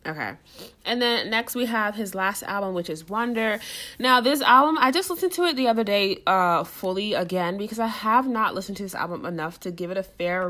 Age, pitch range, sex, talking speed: 20-39, 165-225 Hz, female, 230 wpm